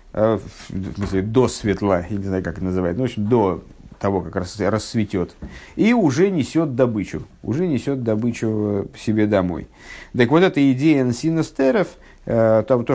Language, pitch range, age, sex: Russian, 100-135 Hz, 50-69, male